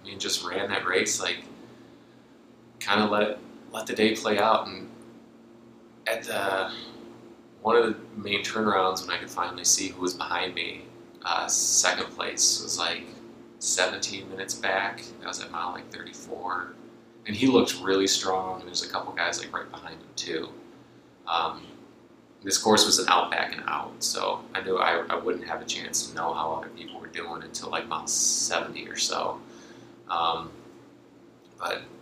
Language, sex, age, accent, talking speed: English, male, 30-49, American, 180 wpm